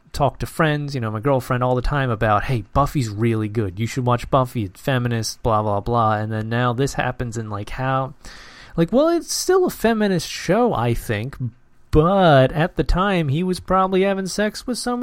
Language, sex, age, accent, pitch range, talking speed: English, male, 30-49, American, 115-150 Hz, 210 wpm